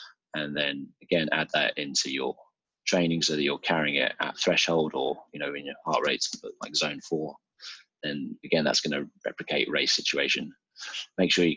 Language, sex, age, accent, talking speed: English, male, 20-39, British, 185 wpm